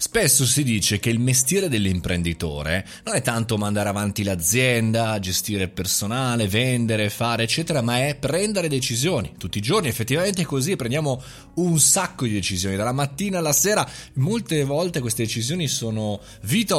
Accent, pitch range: native, 105-150 Hz